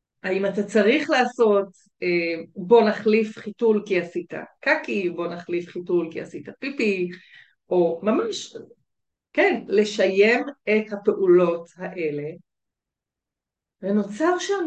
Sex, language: female, Hebrew